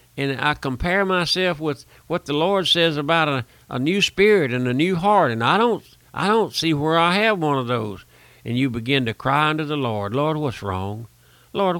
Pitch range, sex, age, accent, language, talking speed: 115-155 Hz, male, 60-79, American, English, 215 wpm